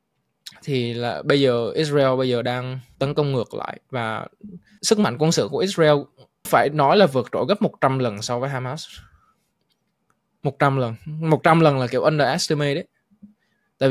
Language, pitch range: Vietnamese, 130-170 Hz